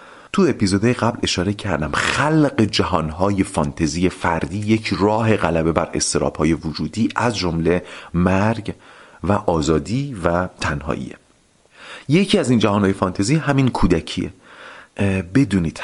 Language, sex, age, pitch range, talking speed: Persian, male, 40-59, 85-110 Hz, 115 wpm